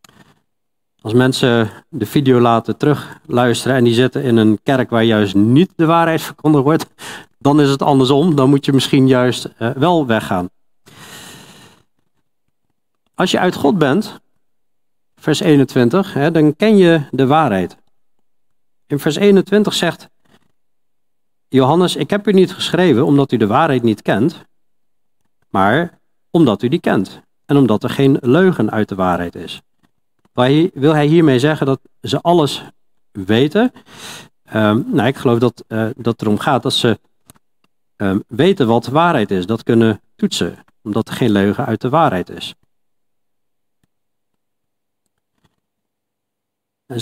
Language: Dutch